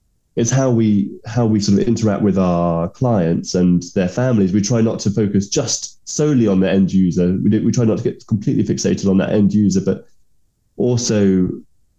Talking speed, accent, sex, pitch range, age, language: 195 wpm, British, male, 95-110 Hz, 20-39, English